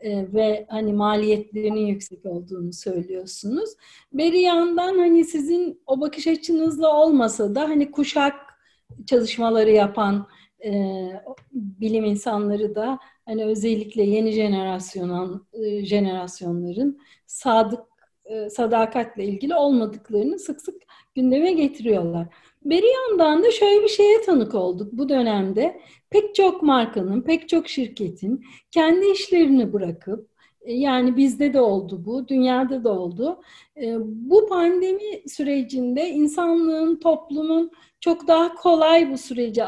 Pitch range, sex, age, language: 215-320 Hz, female, 40-59, Turkish